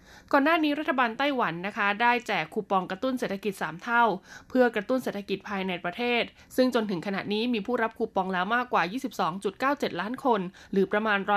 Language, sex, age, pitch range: Thai, female, 20-39, 185-245 Hz